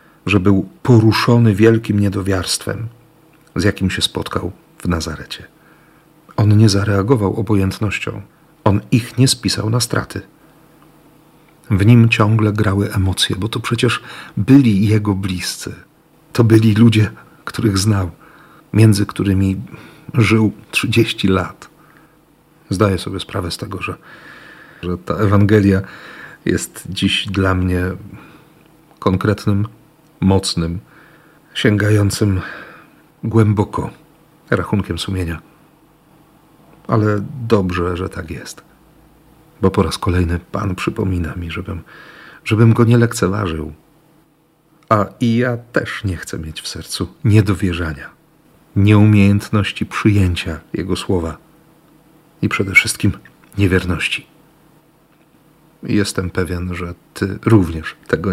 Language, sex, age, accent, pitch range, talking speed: Polish, male, 40-59, native, 95-120 Hz, 105 wpm